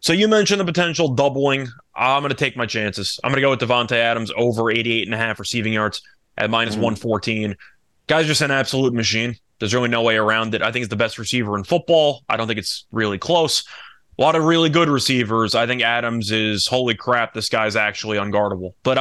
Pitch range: 110-145 Hz